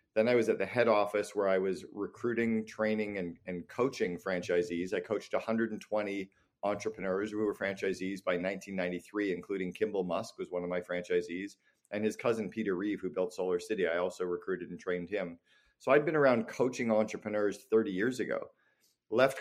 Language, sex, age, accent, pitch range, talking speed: English, male, 40-59, American, 95-110 Hz, 180 wpm